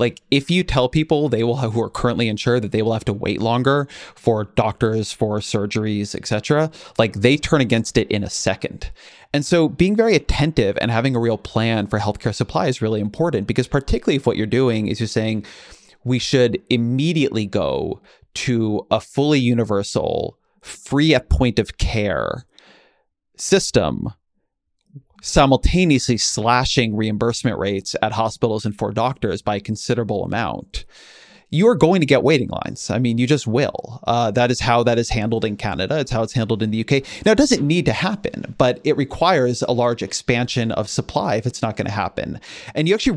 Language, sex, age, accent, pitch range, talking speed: English, male, 30-49, American, 110-130 Hz, 185 wpm